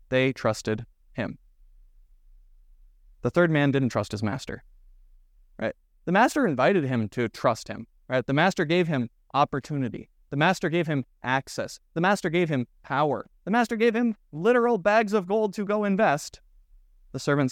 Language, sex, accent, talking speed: English, male, American, 160 wpm